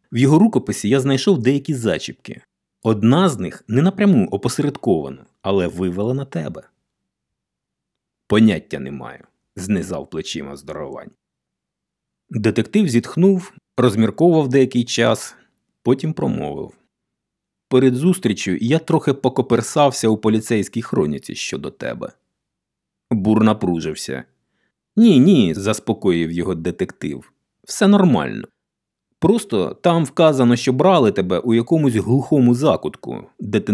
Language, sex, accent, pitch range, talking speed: Ukrainian, male, native, 100-140 Hz, 110 wpm